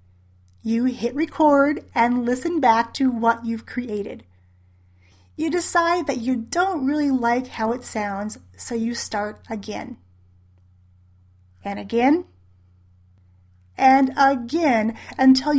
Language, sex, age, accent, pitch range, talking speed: English, female, 30-49, American, 200-275 Hz, 110 wpm